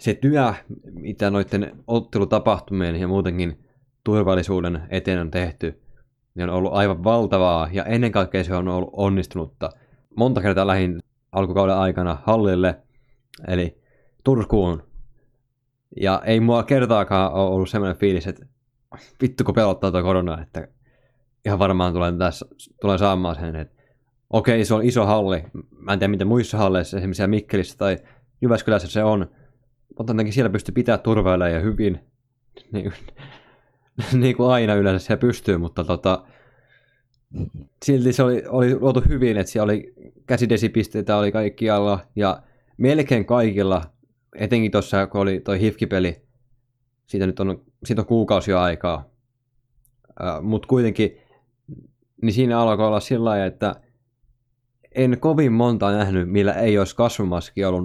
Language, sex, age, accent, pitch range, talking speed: Finnish, male, 20-39, native, 95-125 Hz, 140 wpm